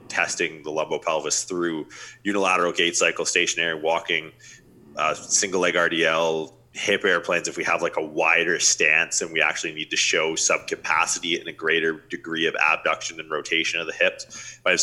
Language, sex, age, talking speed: English, male, 20-39, 180 wpm